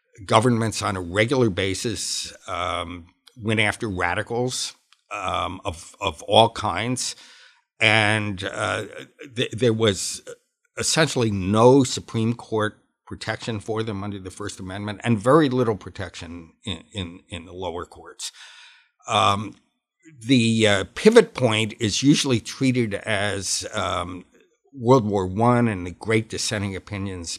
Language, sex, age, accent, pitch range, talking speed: English, male, 60-79, American, 100-120 Hz, 125 wpm